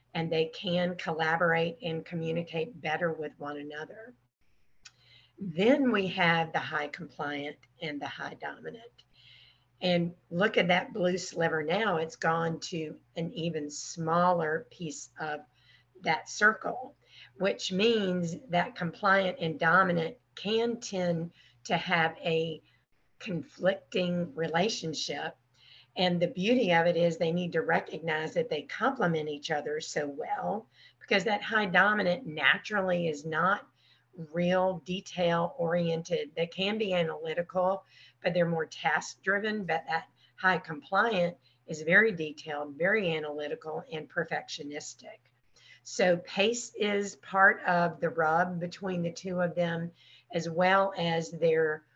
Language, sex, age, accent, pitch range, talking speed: English, female, 50-69, American, 155-185 Hz, 130 wpm